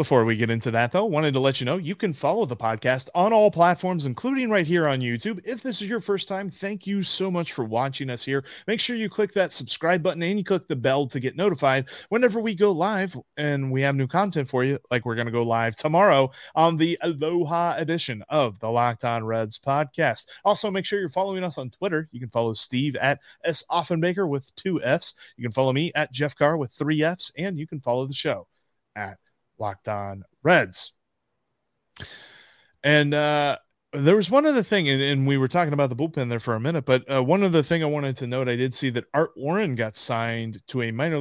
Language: English